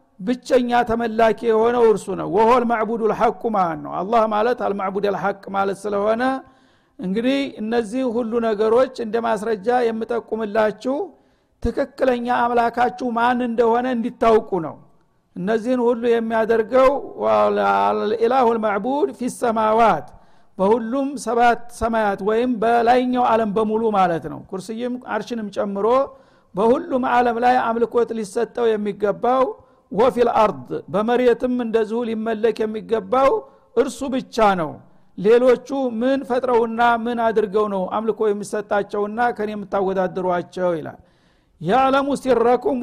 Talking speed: 105 wpm